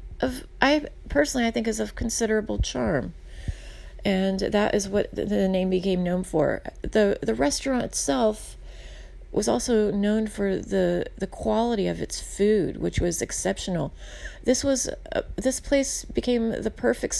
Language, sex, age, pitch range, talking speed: English, female, 30-49, 185-225 Hz, 150 wpm